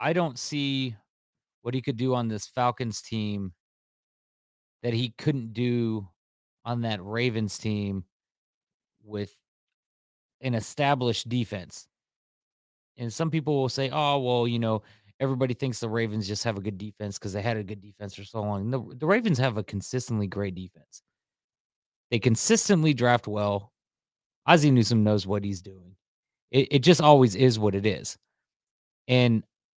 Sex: male